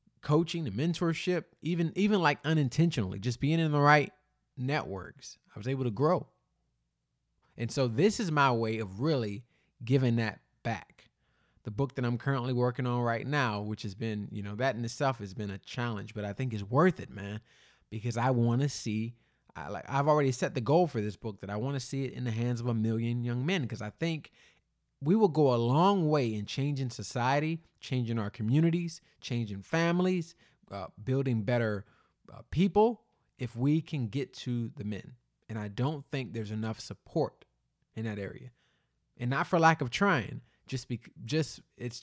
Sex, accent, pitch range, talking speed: male, American, 115-150 Hz, 190 wpm